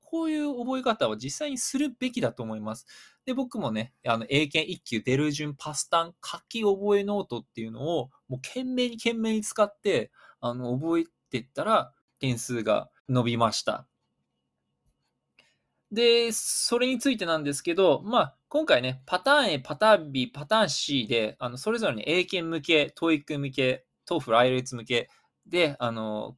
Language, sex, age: Japanese, male, 20-39